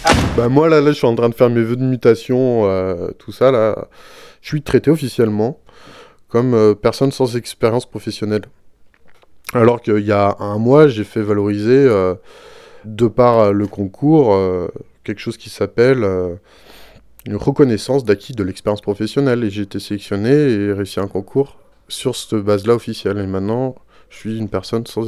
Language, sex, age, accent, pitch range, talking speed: French, male, 20-39, French, 100-120 Hz, 175 wpm